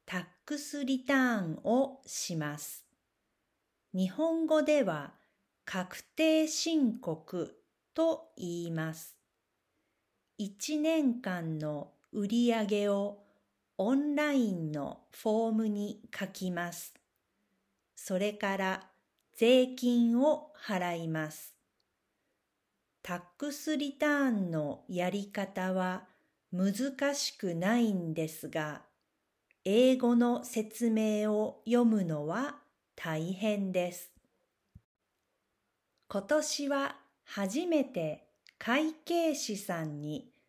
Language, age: Japanese, 50-69